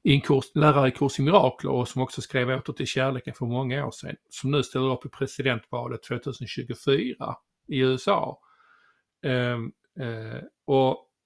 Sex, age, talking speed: male, 50-69, 160 wpm